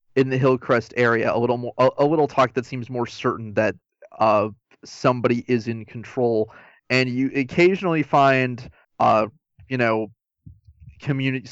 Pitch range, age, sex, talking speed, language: 110-130 Hz, 20-39, male, 150 wpm, English